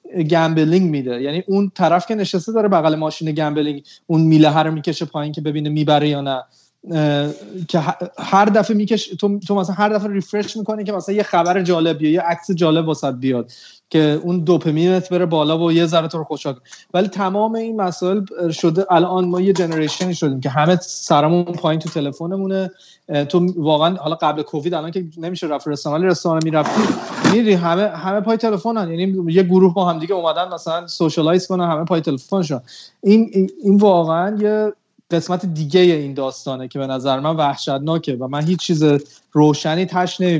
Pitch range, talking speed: 155-195 Hz, 175 wpm